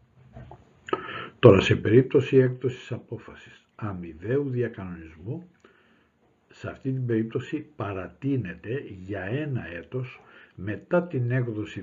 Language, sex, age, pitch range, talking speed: Greek, male, 60-79, 110-150 Hz, 90 wpm